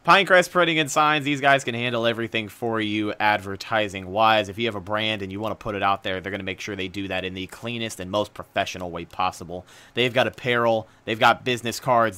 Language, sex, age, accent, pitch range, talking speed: English, male, 30-49, American, 105-130 Hz, 235 wpm